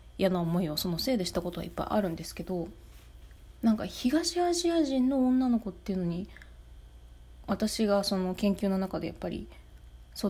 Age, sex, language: 20-39, female, Japanese